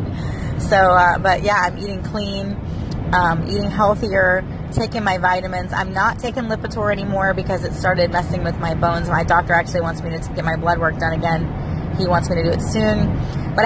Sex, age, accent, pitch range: female, 30-49, American, 170-190 Hz